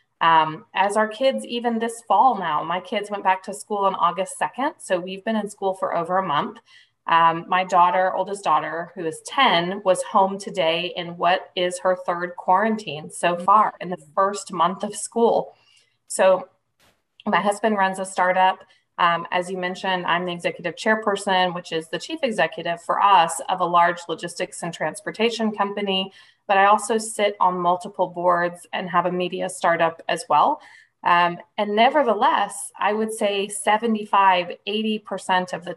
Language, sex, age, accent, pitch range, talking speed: English, female, 20-39, American, 175-205 Hz, 175 wpm